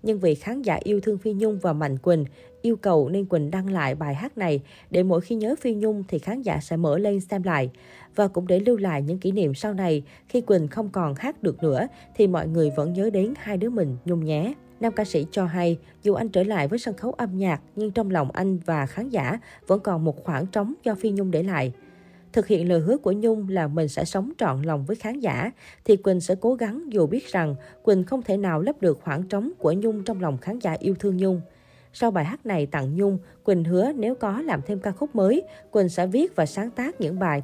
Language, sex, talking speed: Vietnamese, female, 250 wpm